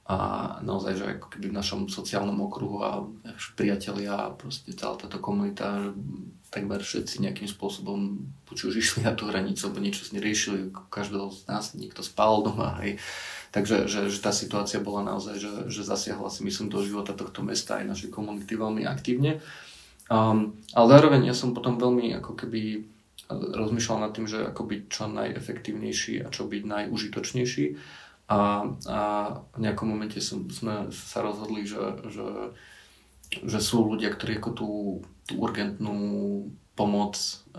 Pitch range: 100-110 Hz